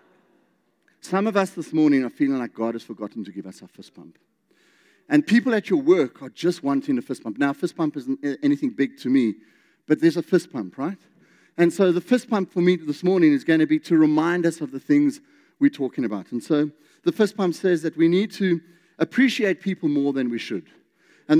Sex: male